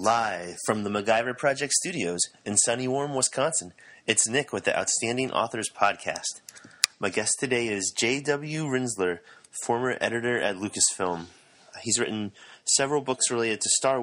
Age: 30-49